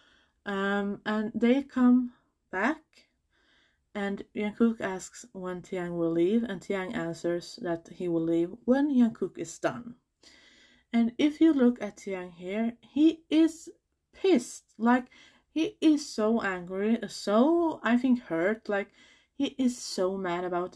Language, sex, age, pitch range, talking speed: English, female, 20-39, 185-295 Hz, 140 wpm